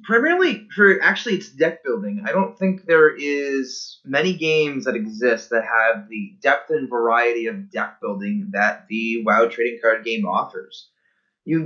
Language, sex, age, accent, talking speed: English, male, 20-39, American, 165 wpm